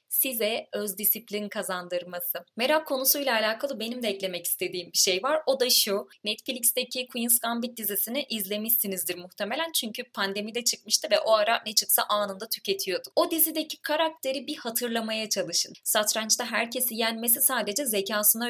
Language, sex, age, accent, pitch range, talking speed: Turkish, female, 30-49, native, 210-265 Hz, 145 wpm